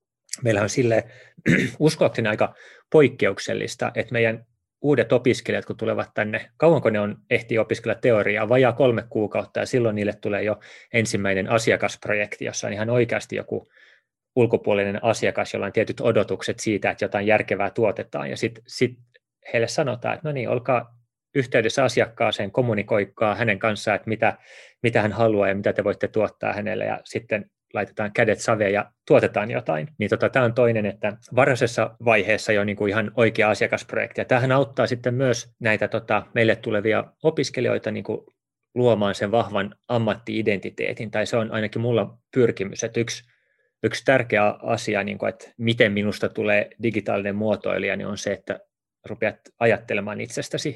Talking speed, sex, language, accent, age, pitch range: 150 wpm, male, Finnish, native, 30-49, 105-120 Hz